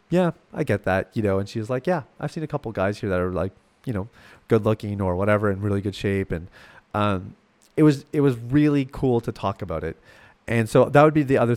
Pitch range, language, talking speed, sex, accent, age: 105-135 Hz, English, 255 wpm, male, American, 30-49